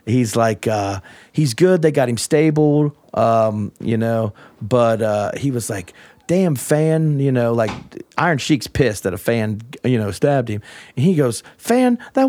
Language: English